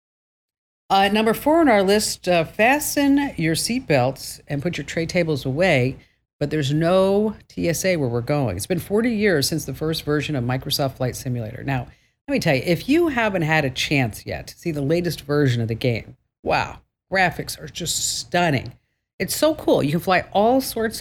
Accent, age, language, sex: American, 50-69, English, female